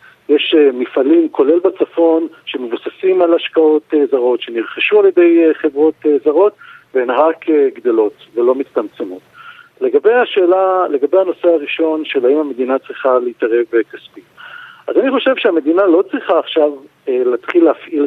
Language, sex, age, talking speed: Hebrew, male, 50-69, 145 wpm